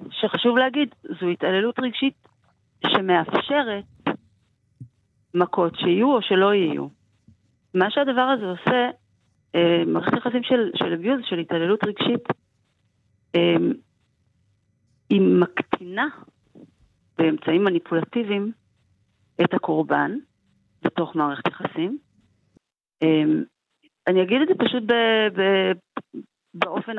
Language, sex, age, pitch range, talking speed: Hebrew, female, 40-59, 170-240 Hz, 95 wpm